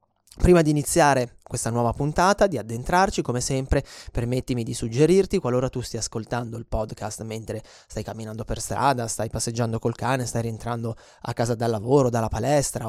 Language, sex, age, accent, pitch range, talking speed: English, male, 20-39, Italian, 115-150 Hz, 170 wpm